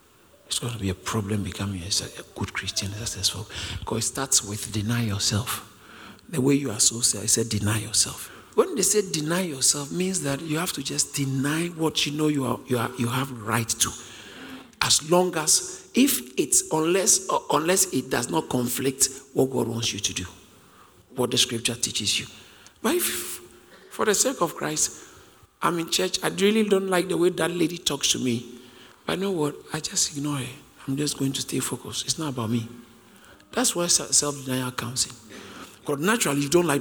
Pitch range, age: 115-165 Hz, 50-69